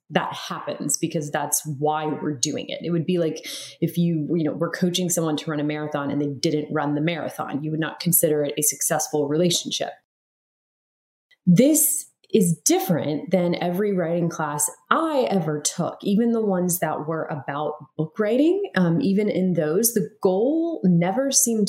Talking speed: 170 wpm